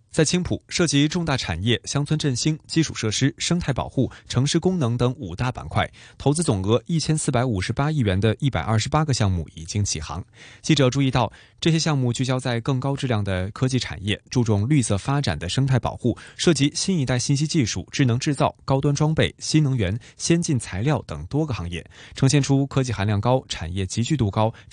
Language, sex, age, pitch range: Chinese, male, 20-39, 105-145 Hz